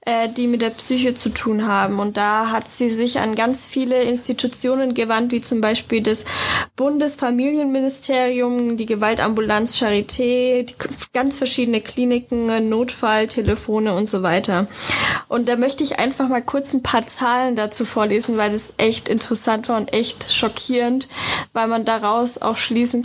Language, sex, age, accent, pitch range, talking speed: German, female, 10-29, German, 220-255 Hz, 150 wpm